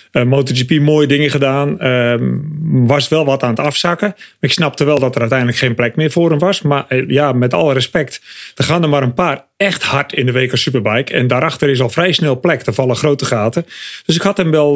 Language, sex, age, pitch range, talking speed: English, male, 40-59, 135-180 Hz, 240 wpm